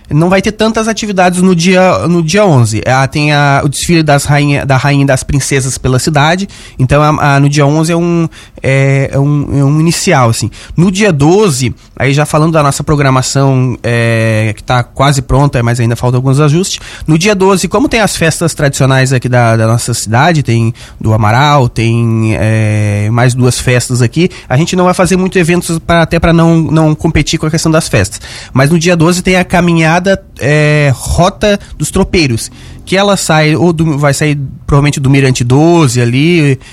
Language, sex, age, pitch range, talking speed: Portuguese, male, 20-39, 125-165 Hz, 170 wpm